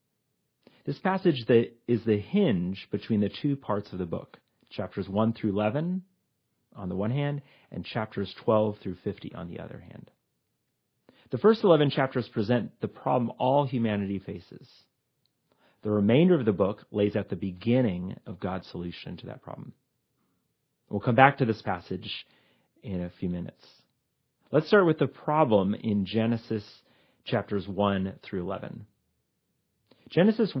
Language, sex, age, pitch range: English, male, 40-59, 100-135 Hz